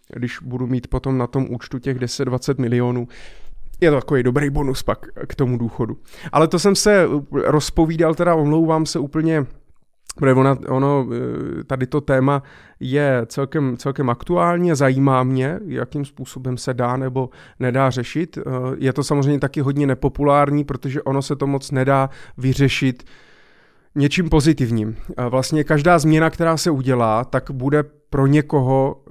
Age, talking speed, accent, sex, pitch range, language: 30-49, 145 wpm, native, male, 125-150 Hz, Czech